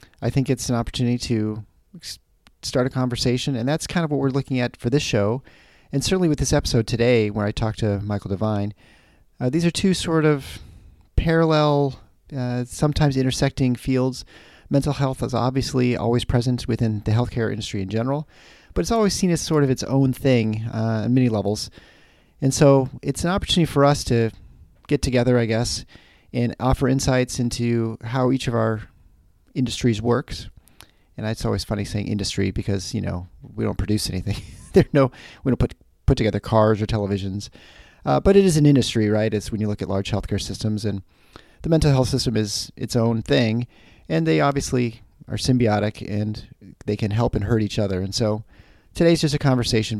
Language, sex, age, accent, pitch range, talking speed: English, male, 40-59, American, 105-135 Hz, 190 wpm